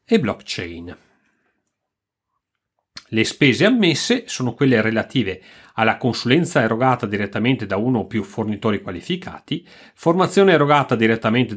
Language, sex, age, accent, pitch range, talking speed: Italian, male, 40-59, native, 105-145 Hz, 110 wpm